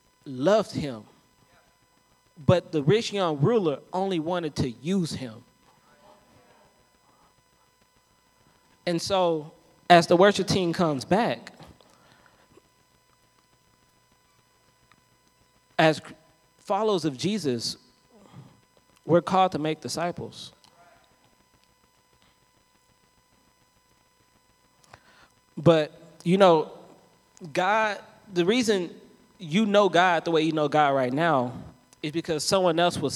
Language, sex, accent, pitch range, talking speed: English, male, American, 140-185 Hz, 90 wpm